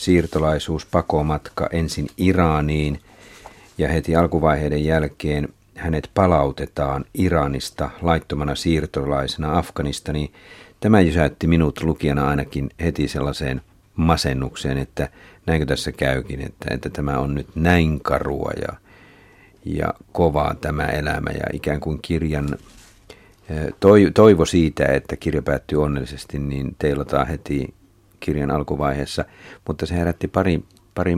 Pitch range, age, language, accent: 75-90 Hz, 50-69, Finnish, native